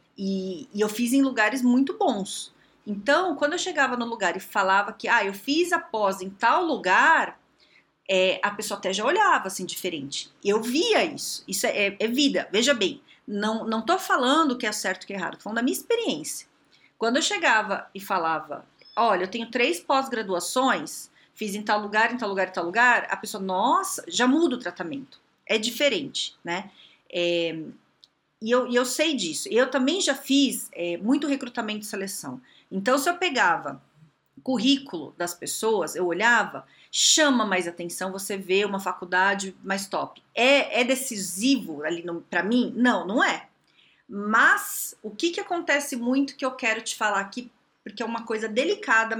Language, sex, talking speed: Portuguese, female, 180 wpm